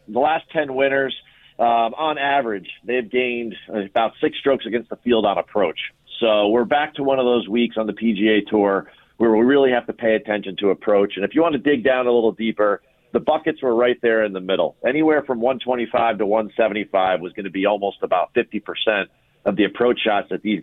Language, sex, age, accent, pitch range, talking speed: English, male, 40-59, American, 105-130 Hz, 220 wpm